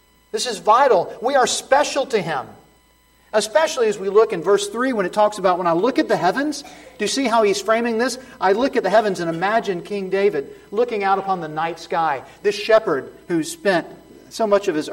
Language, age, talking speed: English, 40-59, 220 wpm